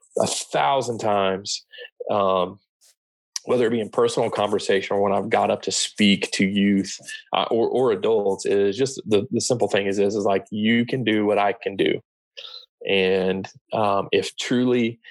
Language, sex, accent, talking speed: English, male, American, 180 wpm